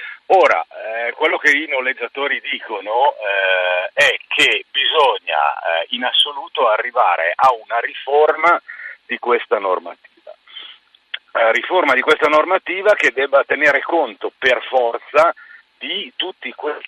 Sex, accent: male, native